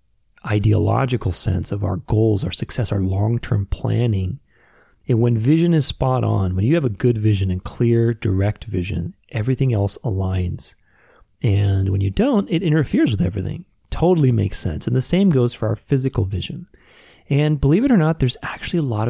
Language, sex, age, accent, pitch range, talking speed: English, male, 30-49, American, 100-135 Hz, 180 wpm